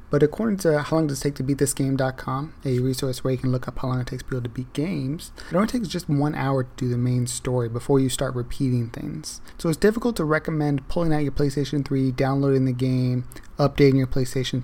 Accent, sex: American, male